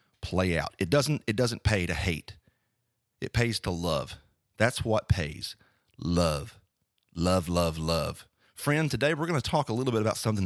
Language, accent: English, American